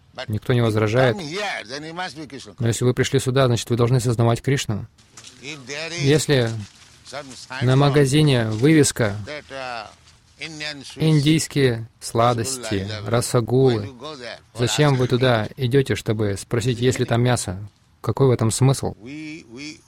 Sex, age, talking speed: male, 20-39, 105 wpm